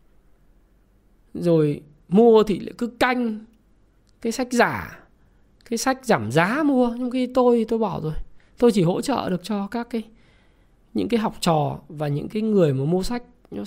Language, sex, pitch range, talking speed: Vietnamese, male, 170-285 Hz, 180 wpm